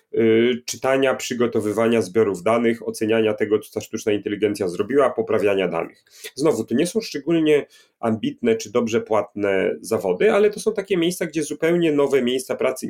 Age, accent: 30-49, native